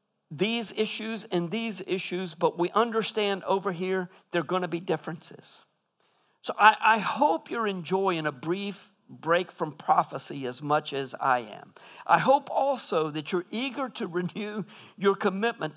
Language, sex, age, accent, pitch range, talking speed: English, male, 50-69, American, 165-215 Hz, 160 wpm